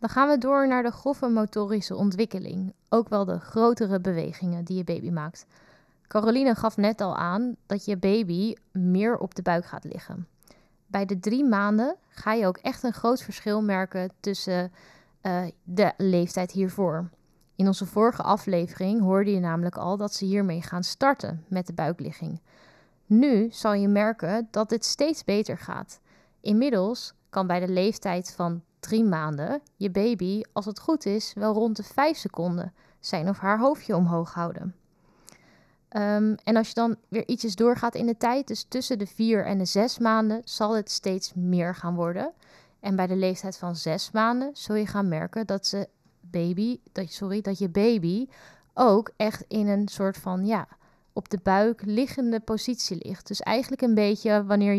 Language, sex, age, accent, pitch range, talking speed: Dutch, female, 20-39, Dutch, 185-225 Hz, 175 wpm